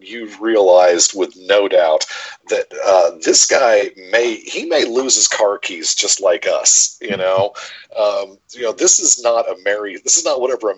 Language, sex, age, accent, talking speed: English, male, 40-59, American, 190 wpm